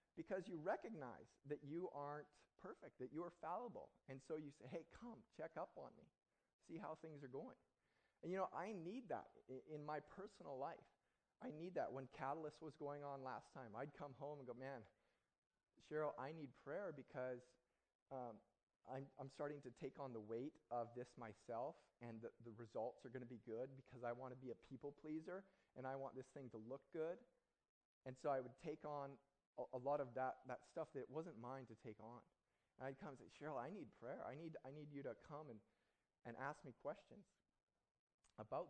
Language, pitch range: English, 125-150 Hz